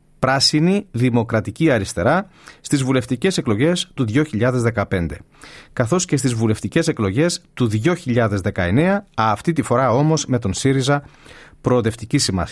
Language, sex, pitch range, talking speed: Greek, male, 105-145 Hz, 110 wpm